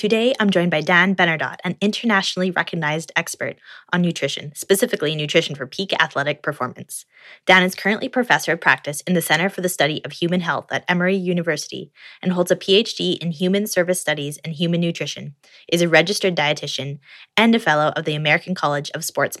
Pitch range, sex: 150-185 Hz, female